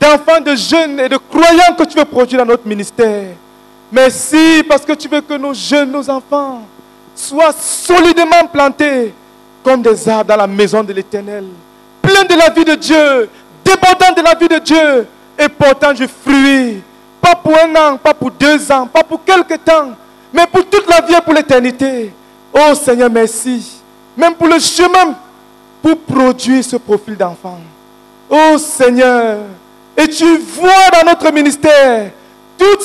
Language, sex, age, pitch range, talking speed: English, male, 40-59, 255-345 Hz, 165 wpm